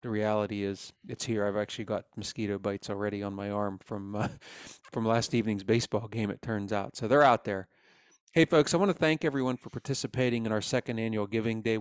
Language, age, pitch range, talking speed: English, 30-49, 105-120 Hz, 220 wpm